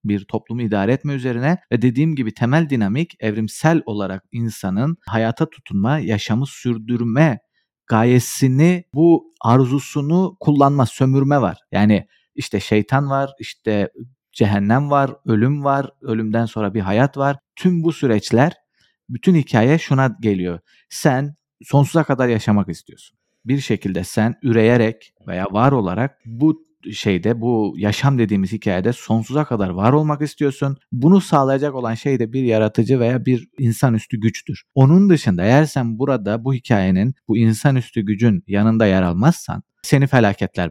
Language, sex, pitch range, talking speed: Turkish, male, 110-145 Hz, 135 wpm